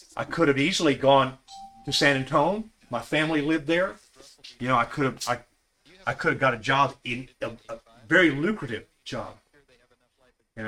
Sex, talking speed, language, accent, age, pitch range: male, 175 wpm, English, American, 40-59, 120-140 Hz